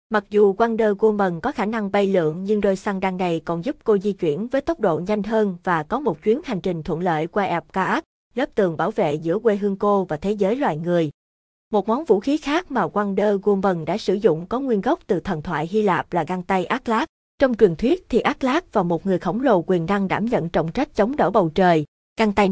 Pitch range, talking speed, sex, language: 180-225 Hz, 250 wpm, female, Vietnamese